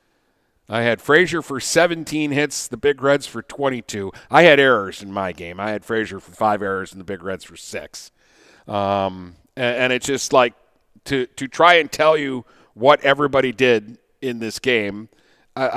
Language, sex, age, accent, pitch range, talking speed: English, male, 50-69, American, 120-145 Hz, 185 wpm